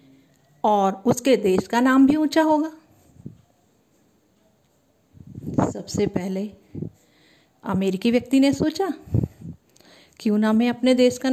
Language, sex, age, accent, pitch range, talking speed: Hindi, female, 50-69, native, 200-255 Hz, 105 wpm